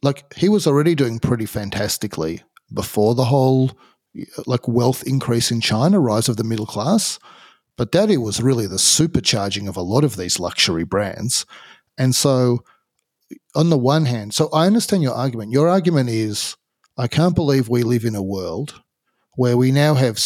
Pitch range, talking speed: 115-155 Hz, 180 wpm